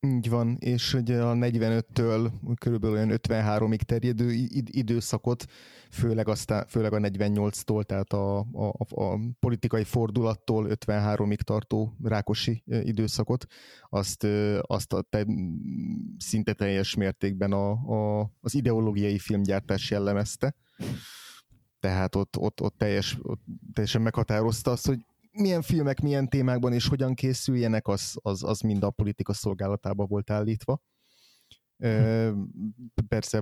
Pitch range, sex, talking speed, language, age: 105-120 Hz, male, 120 wpm, Hungarian, 30-49